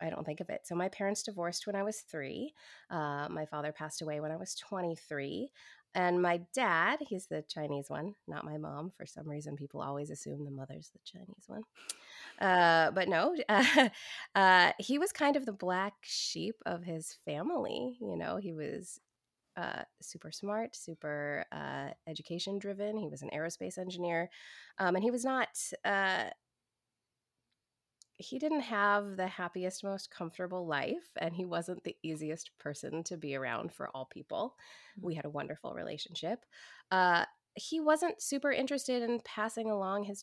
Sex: female